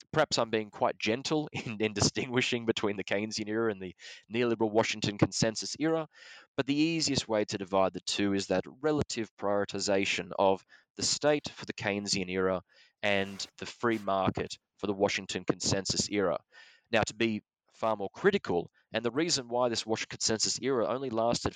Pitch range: 100-125 Hz